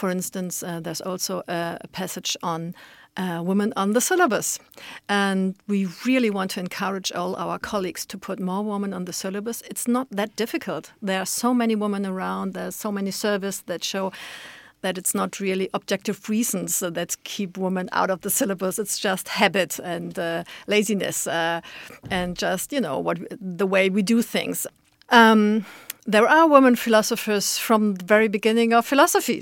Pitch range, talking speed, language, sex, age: 180-210 Hz, 175 wpm, Danish, female, 50-69